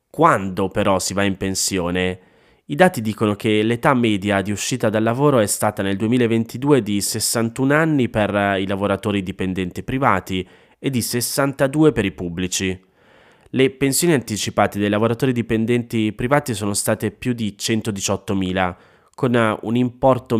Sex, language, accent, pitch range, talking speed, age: male, Italian, native, 95-120 Hz, 145 wpm, 20-39